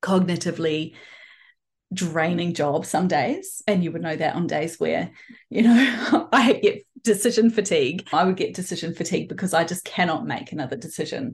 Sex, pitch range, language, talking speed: female, 160-220 Hz, English, 165 wpm